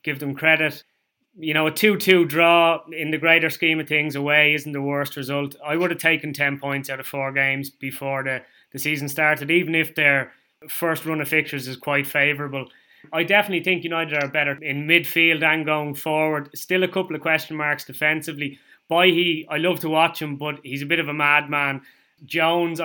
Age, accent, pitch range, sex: 20-39, Irish, 145-165 Hz, male